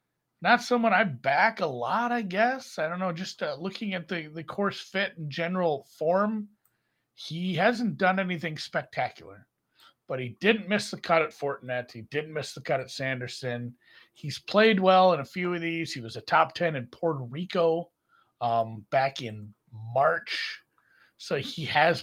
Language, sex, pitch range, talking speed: English, male, 130-195 Hz, 175 wpm